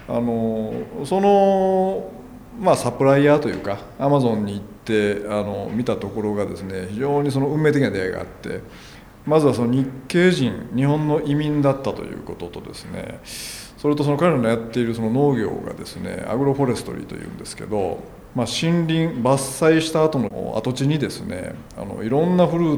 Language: Japanese